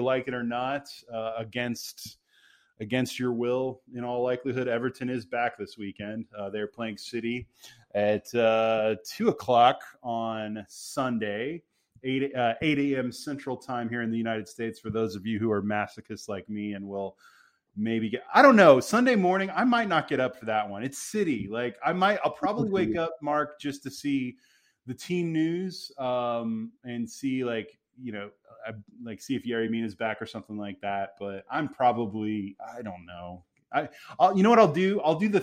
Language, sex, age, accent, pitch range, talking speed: English, male, 20-39, American, 110-135 Hz, 190 wpm